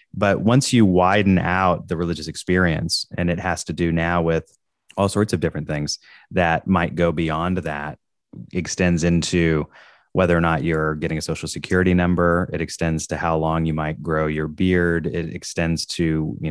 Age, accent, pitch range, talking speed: 30-49, American, 80-90 Hz, 180 wpm